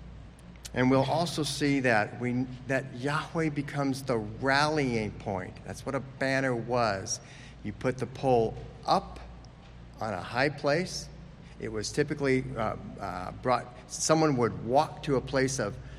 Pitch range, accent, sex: 110-140 Hz, American, male